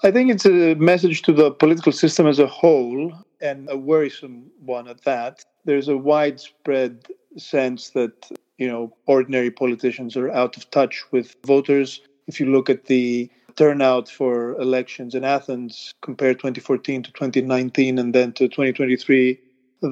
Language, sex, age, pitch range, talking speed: English, male, 40-59, 130-145 Hz, 155 wpm